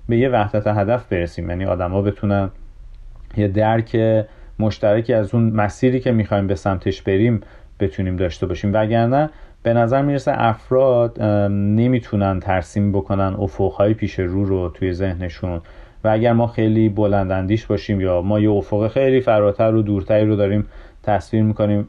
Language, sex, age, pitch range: Persian, male, 40-59, 100-115 Hz